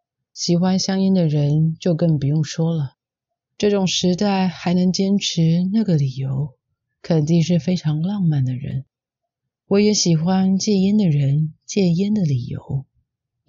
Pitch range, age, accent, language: 145-185 Hz, 30-49, native, Chinese